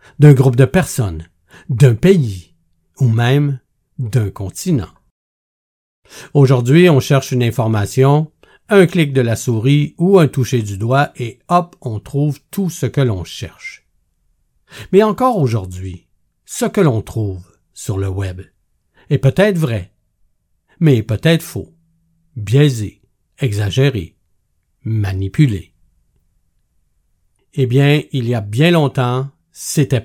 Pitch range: 100-160 Hz